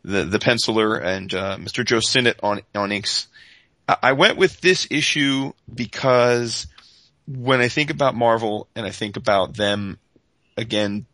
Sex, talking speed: male, 150 wpm